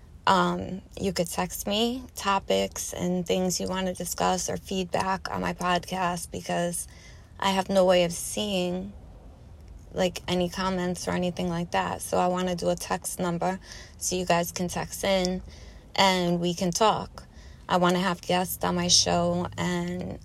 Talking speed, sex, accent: 170 wpm, female, American